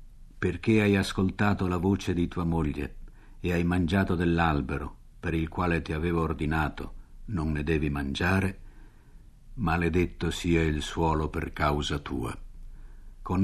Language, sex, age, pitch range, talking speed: Italian, male, 60-79, 80-105 Hz, 135 wpm